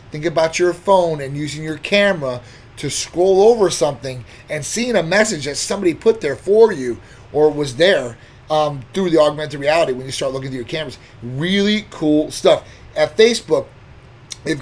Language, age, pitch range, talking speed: English, 30-49, 130-165 Hz, 175 wpm